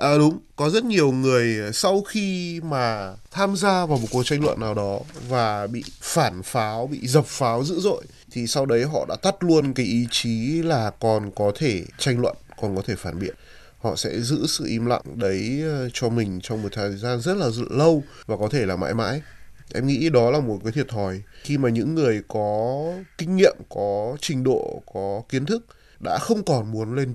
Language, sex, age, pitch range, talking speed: Vietnamese, male, 20-39, 120-180 Hz, 210 wpm